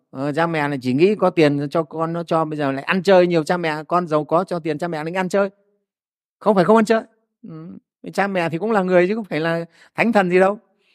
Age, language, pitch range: 30-49, Vietnamese, 140-190 Hz